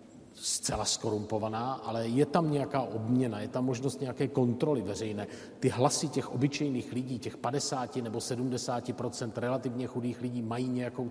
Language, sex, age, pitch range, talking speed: Czech, male, 40-59, 115-145 Hz, 145 wpm